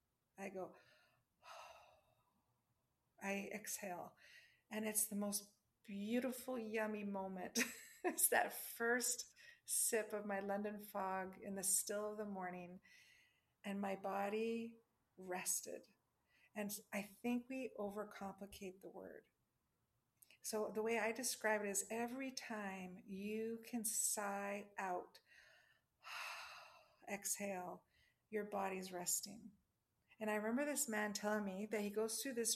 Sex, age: female, 50-69